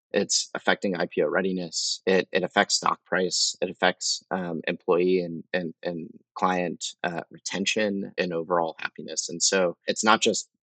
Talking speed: 150 wpm